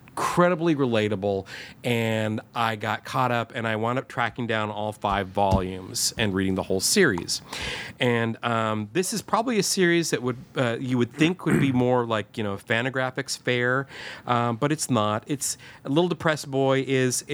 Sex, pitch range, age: male, 105-135 Hz, 40-59